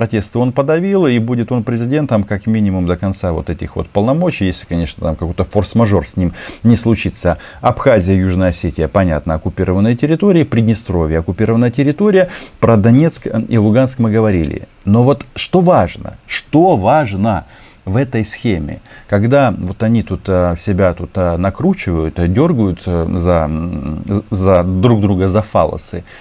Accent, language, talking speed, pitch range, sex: native, Russian, 140 wpm, 90-120 Hz, male